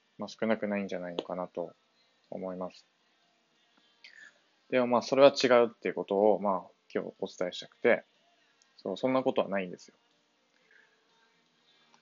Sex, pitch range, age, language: male, 100-130 Hz, 20-39, Japanese